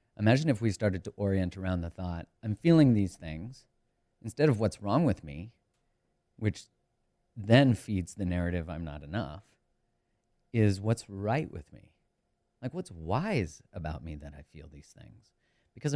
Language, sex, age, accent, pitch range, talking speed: English, male, 40-59, American, 85-110 Hz, 160 wpm